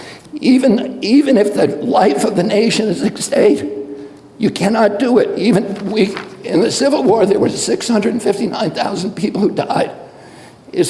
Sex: male